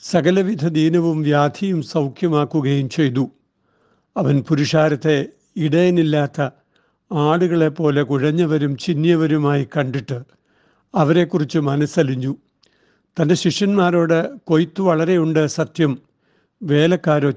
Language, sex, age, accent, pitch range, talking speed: Malayalam, male, 60-79, native, 145-170 Hz, 75 wpm